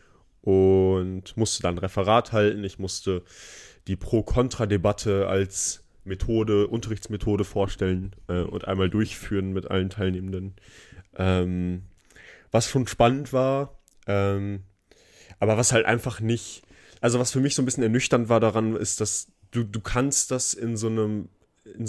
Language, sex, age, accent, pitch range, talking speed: German, male, 20-39, German, 95-115 Hz, 140 wpm